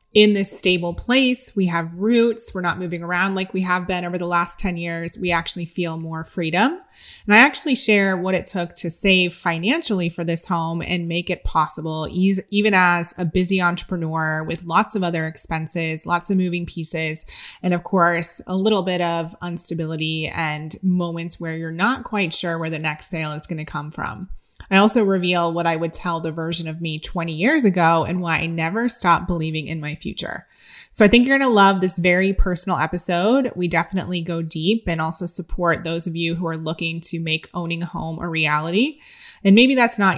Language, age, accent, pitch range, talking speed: English, 20-39, American, 165-190 Hz, 205 wpm